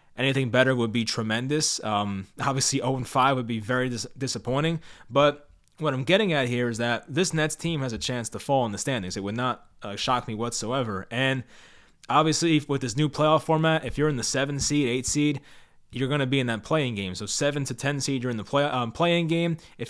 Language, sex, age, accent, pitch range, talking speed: English, male, 20-39, American, 120-150 Hz, 220 wpm